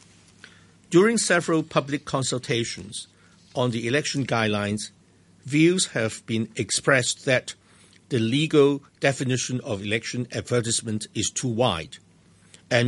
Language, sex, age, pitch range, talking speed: English, male, 60-79, 105-140 Hz, 105 wpm